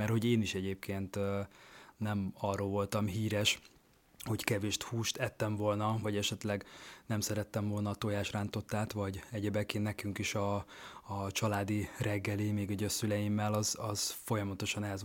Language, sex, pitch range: Hungarian, male, 100-120 Hz